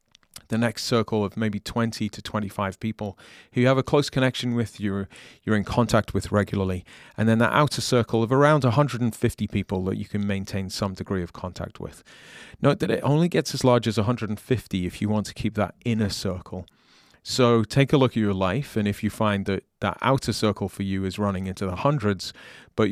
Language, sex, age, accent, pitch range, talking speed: English, male, 30-49, British, 100-120 Hz, 210 wpm